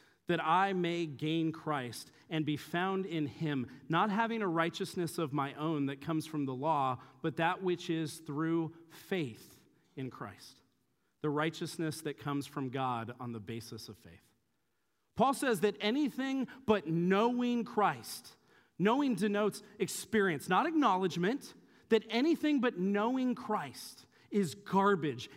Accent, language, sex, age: American, English, male, 40-59